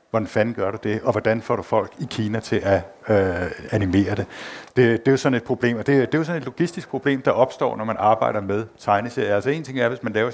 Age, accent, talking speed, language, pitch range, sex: 60-79, Danish, 265 wpm, English, 95-115 Hz, male